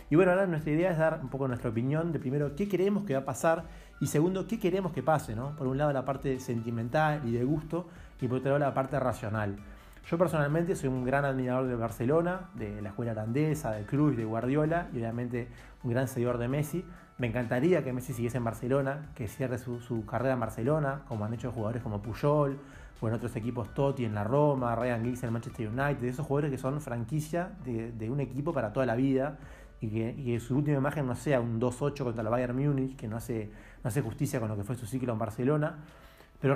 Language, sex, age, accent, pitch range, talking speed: Spanish, male, 20-39, Argentinian, 120-145 Hz, 235 wpm